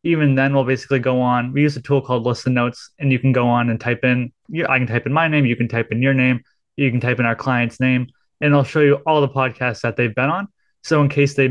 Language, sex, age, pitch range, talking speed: English, male, 20-39, 125-145 Hz, 285 wpm